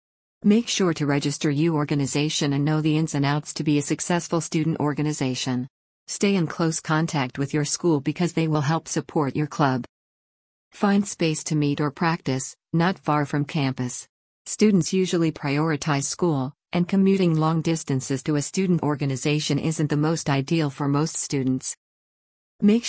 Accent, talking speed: American, 165 wpm